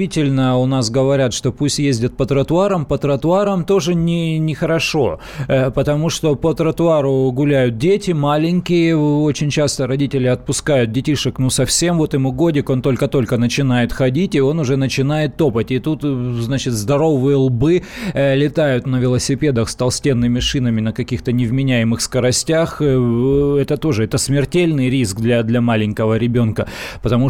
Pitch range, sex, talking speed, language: 130-170 Hz, male, 140 wpm, Russian